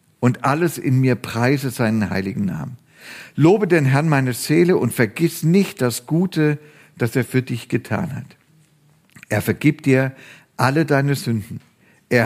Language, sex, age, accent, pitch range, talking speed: German, male, 50-69, German, 110-140 Hz, 150 wpm